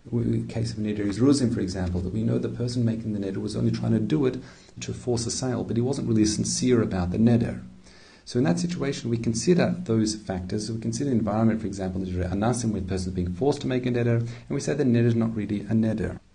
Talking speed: 250 wpm